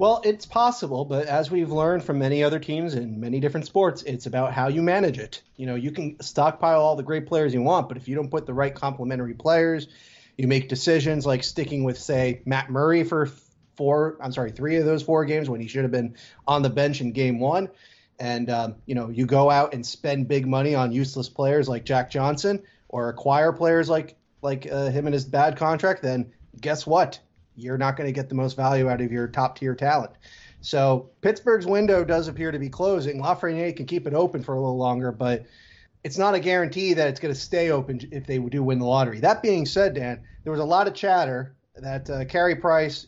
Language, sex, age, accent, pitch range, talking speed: English, male, 30-49, American, 130-160 Hz, 225 wpm